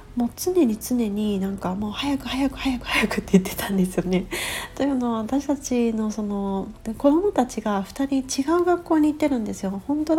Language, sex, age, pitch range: Japanese, female, 40-59, 195-255 Hz